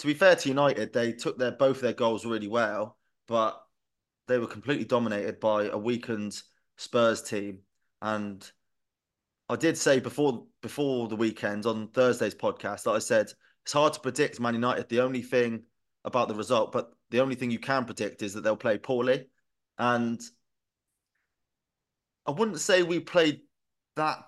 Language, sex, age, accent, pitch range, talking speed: English, male, 20-39, British, 110-125 Hz, 170 wpm